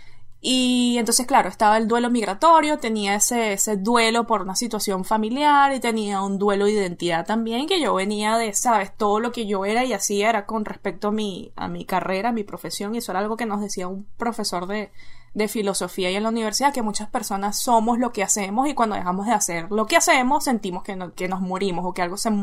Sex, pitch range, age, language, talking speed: female, 195-240 Hz, 20-39, English, 230 wpm